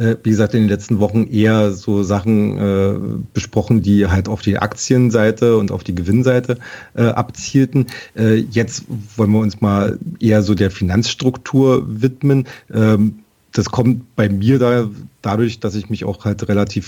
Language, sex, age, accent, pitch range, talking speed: German, male, 40-59, German, 100-120 Hz, 160 wpm